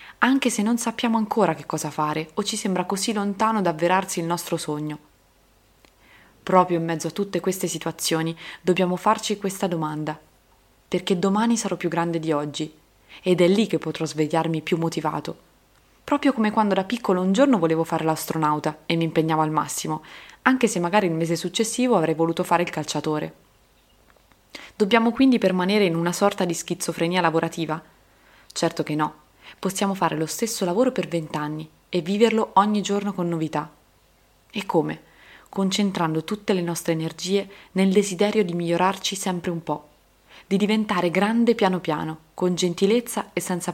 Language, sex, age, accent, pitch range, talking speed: Italian, female, 20-39, native, 160-200 Hz, 160 wpm